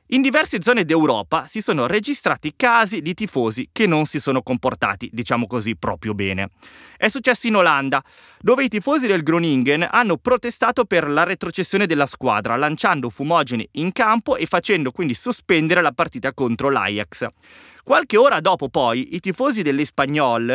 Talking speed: 160 wpm